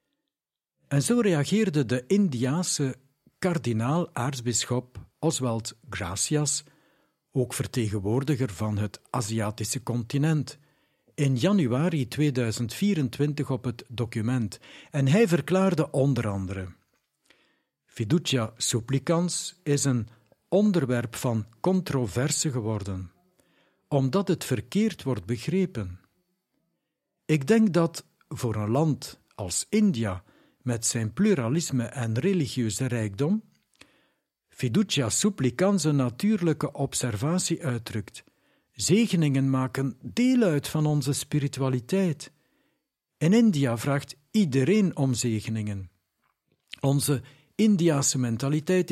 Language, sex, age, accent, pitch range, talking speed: Dutch, male, 60-79, Swiss, 120-170 Hz, 90 wpm